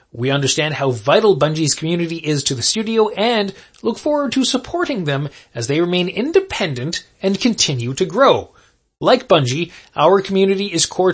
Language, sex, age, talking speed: English, male, 20-39, 160 wpm